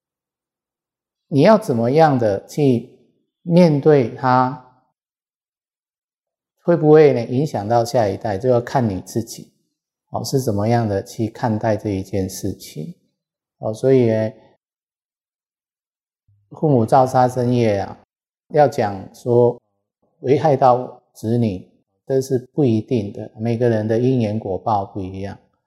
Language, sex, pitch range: Chinese, male, 105-130 Hz